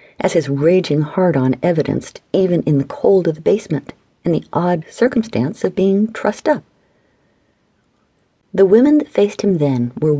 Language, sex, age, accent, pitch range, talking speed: English, female, 50-69, American, 145-205 Hz, 160 wpm